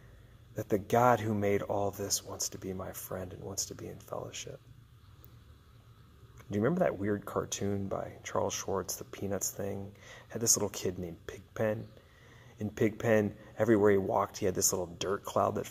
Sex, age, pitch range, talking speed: male, 30-49, 100-115 Hz, 185 wpm